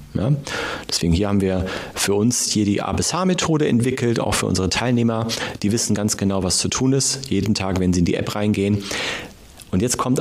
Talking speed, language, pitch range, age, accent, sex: 205 wpm, German, 100-135 Hz, 40-59, German, male